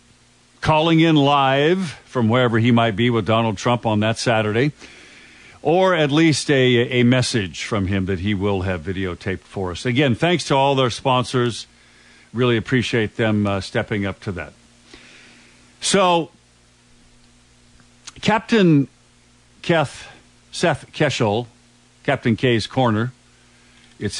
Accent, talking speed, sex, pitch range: American, 125 wpm, male, 95-130 Hz